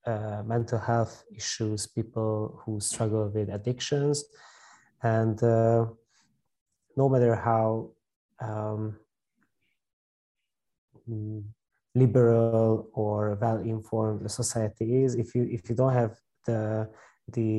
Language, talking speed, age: English, 100 wpm, 20-39